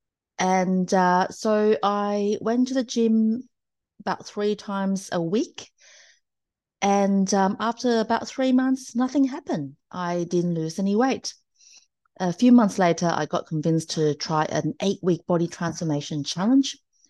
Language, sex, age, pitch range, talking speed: English, female, 30-49, 175-225 Hz, 140 wpm